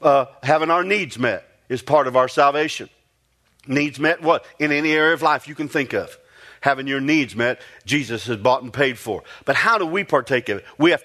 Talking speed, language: 225 wpm, English